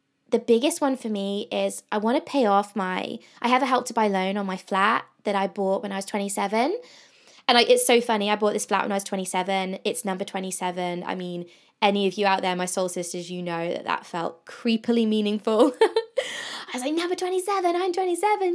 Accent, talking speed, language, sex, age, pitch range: British, 225 wpm, English, female, 20-39, 200-260 Hz